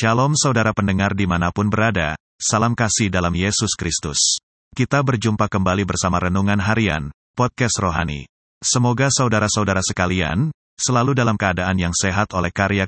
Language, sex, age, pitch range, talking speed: Indonesian, male, 30-49, 85-115 Hz, 130 wpm